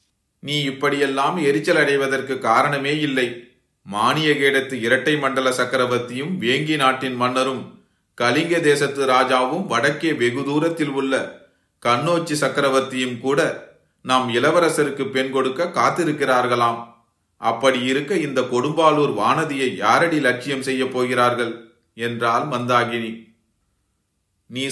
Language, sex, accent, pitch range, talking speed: Tamil, male, native, 120-145 Hz, 90 wpm